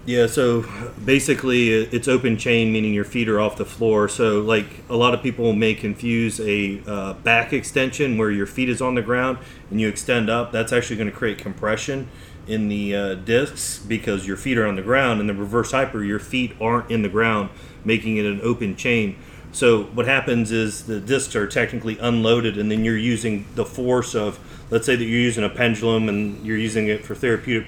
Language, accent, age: English, American, 30-49